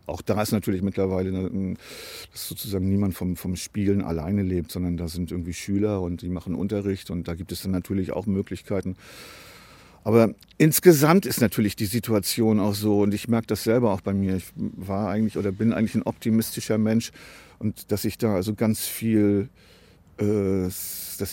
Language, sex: German, male